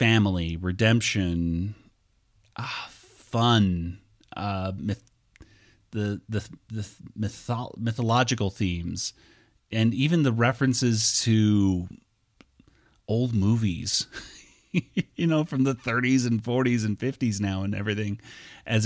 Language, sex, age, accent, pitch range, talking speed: English, male, 30-49, American, 95-115 Hz, 100 wpm